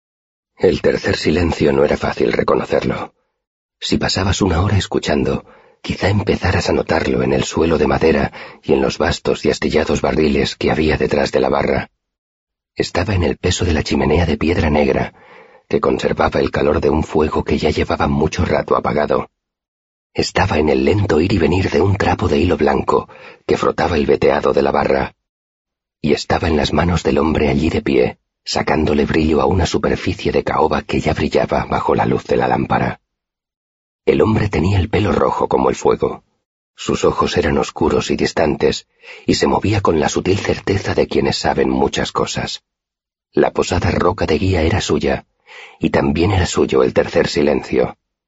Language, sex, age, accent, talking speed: Spanish, male, 40-59, Spanish, 180 wpm